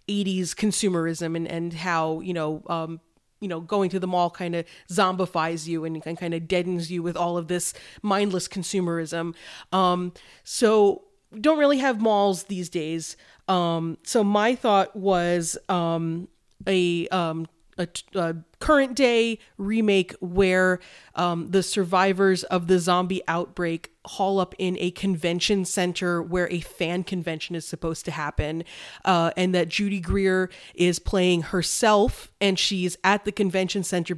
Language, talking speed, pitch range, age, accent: English, 150 wpm, 170-195 Hz, 30-49, American